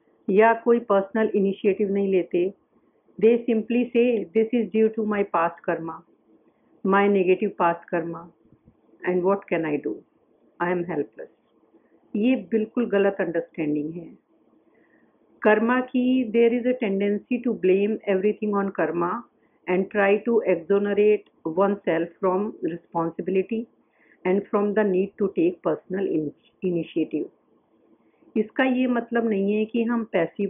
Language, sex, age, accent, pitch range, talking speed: English, female, 50-69, Indian, 185-230 Hz, 130 wpm